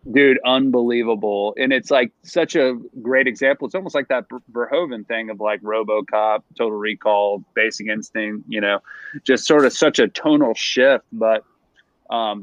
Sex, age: male, 30-49